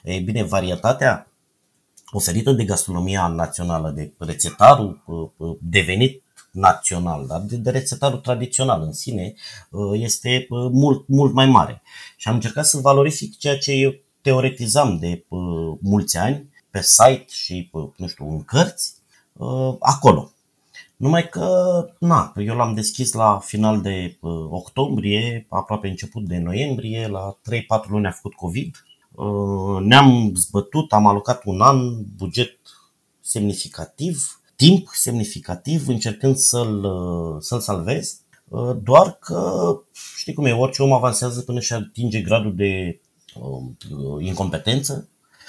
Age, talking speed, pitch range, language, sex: 30-49, 115 wpm, 90-125 Hz, Romanian, male